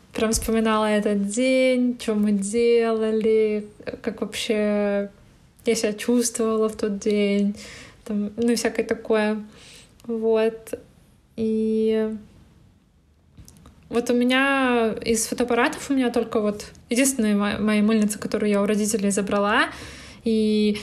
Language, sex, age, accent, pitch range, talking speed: Russian, female, 20-39, native, 215-245 Hz, 115 wpm